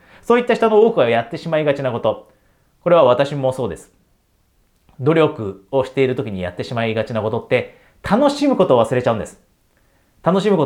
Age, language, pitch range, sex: 30-49, Japanese, 125-190 Hz, male